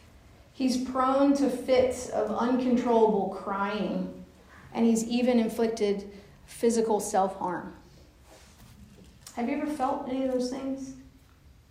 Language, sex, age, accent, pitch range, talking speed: English, female, 40-59, American, 205-245 Hz, 110 wpm